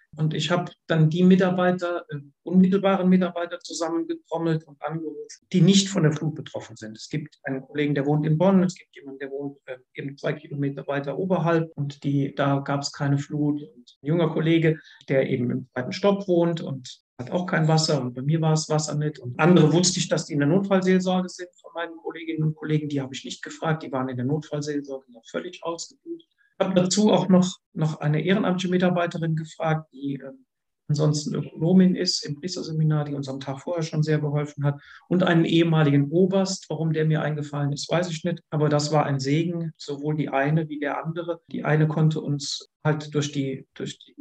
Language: German